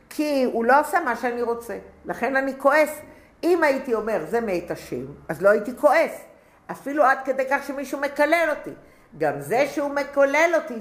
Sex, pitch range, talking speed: female, 195-275 Hz, 155 wpm